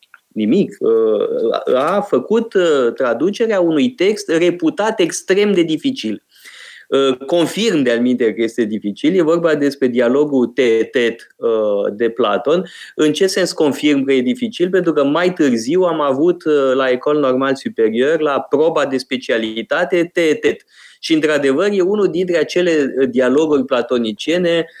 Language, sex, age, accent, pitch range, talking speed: Romanian, male, 20-39, native, 125-180 Hz, 130 wpm